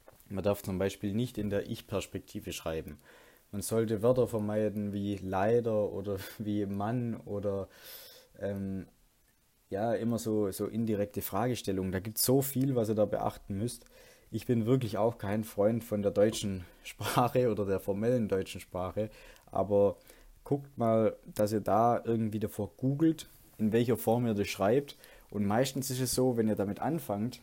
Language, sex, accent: German, male, German